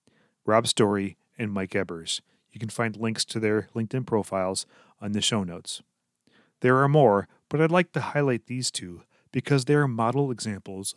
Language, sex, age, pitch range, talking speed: English, male, 30-49, 100-125 Hz, 170 wpm